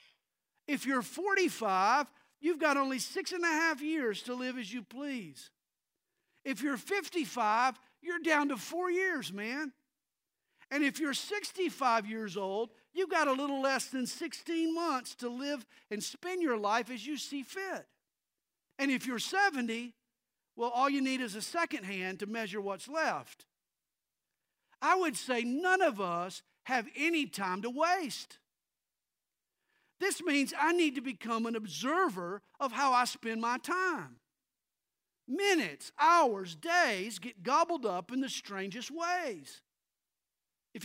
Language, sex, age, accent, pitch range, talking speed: English, male, 50-69, American, 235-330 Hz, 150 wpm